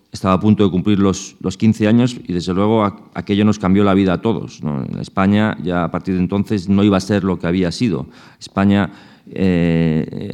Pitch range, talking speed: 95-110 Hz, 215 wpm